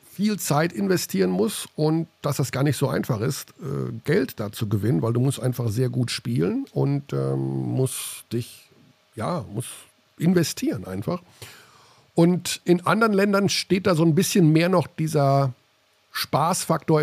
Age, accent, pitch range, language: 50-69, German, 125-175 Hz, German